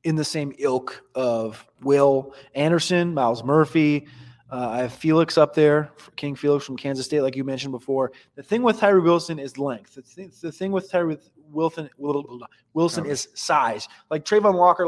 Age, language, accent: 20-39, English, American